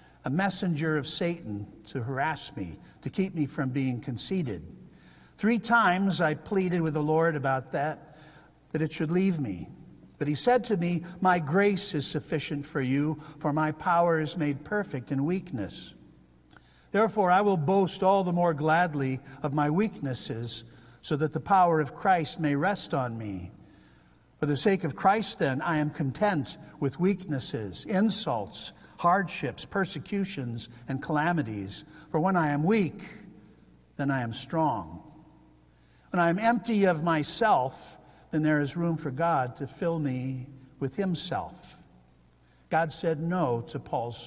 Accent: American